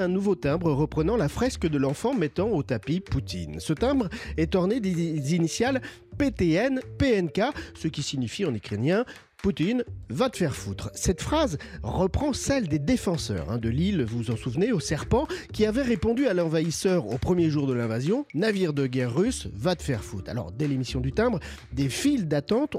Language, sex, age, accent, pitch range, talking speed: French, male, 40-59, French, 120-195 Hz, 195 wpm